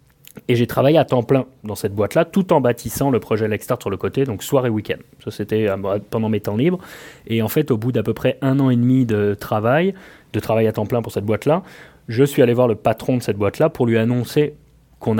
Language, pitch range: French, 110-135 Hz